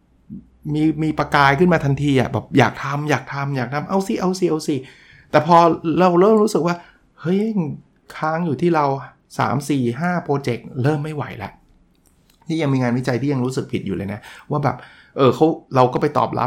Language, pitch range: Thai, 125-160 Hz